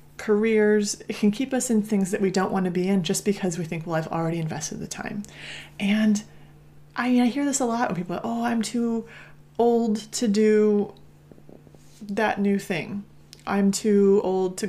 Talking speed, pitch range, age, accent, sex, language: 195 wpm, 175-215 Hz, 30-49, American, female, English